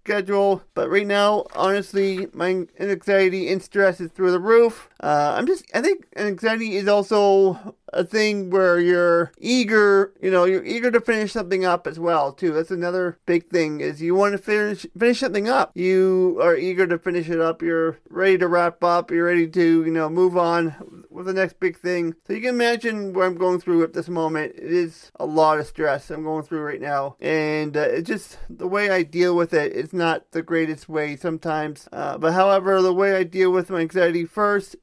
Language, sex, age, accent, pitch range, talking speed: English, male, 30-49, American, 170-195 Hz, 210 wpm